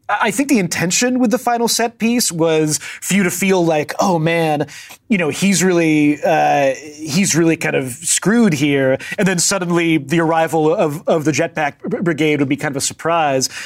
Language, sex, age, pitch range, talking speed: English, male, 30-49, 150-190 Hz, 195 wpm